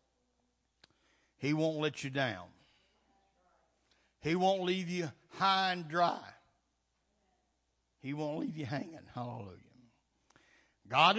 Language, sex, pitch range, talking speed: English, male, 120-160 Hz, 100 wpm